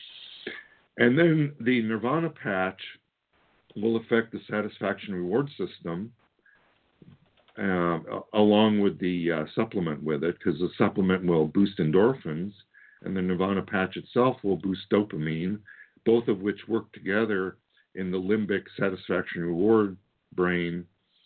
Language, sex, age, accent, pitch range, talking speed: English, male, 50-69, American, 85-105 Hz, 125 wpm